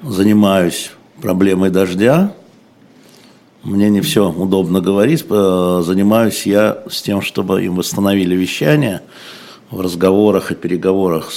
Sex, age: male, 60-79